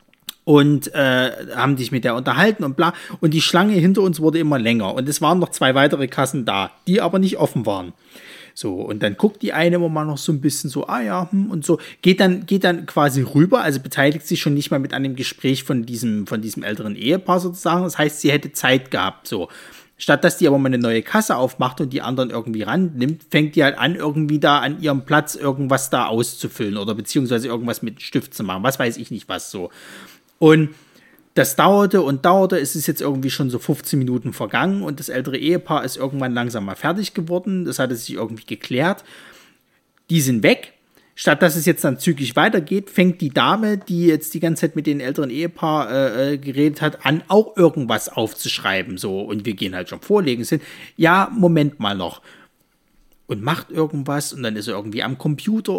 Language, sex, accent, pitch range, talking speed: German, male, German, 135-175 Hz, 215 wpm